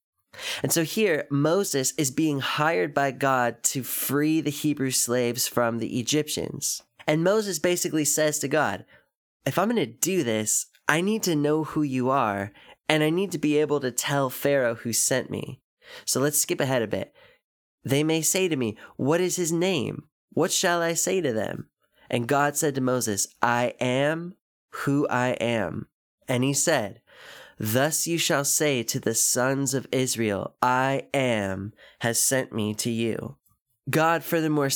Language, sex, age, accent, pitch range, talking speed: English, male, 20-39, American, 120-150 Hz, 175 wpm